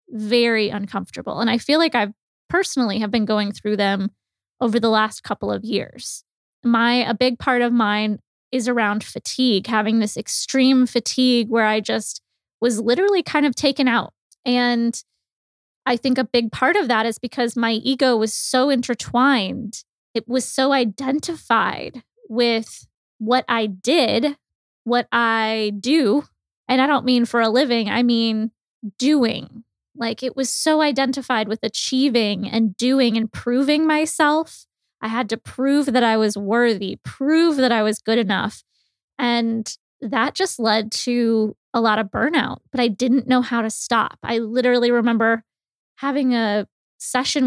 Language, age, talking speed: English, 20-39, 160 wpm